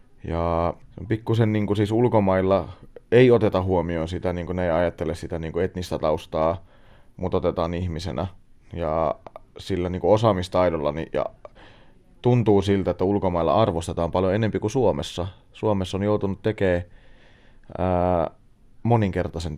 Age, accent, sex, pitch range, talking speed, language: 30-49, native, male, 85-105 Hz, 130 wpm, Finnish